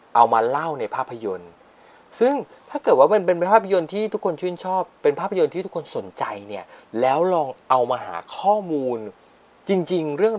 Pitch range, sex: 135-195 Hz, male